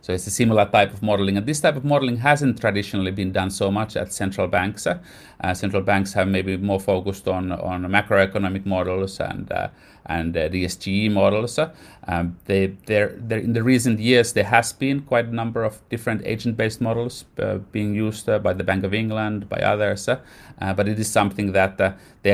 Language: English